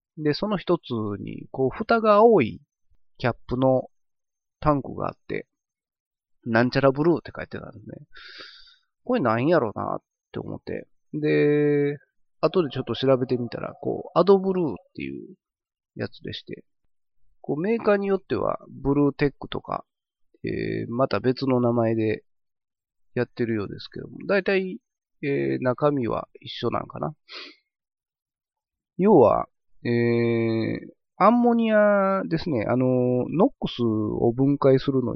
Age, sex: 30-49, male